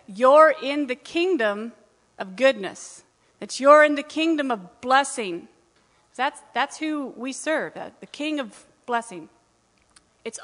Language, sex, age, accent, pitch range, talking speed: English, female, 40-59, American, 225-300 Hz, 130 wpm